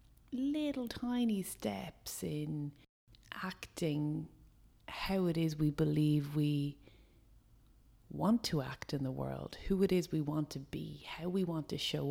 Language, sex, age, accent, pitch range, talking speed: English, female, 30-49, Irish, 140-175 Hz, 145 wpm